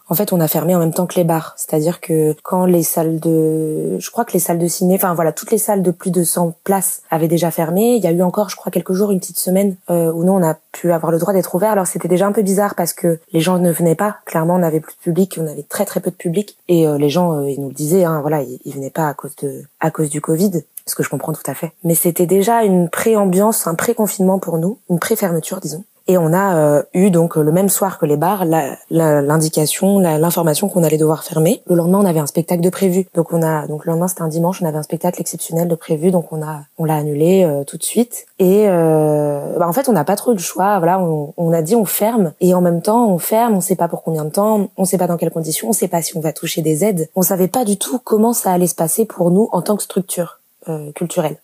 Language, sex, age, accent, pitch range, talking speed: French, female, 20-39, French, 165-195 Hz, 290 wpm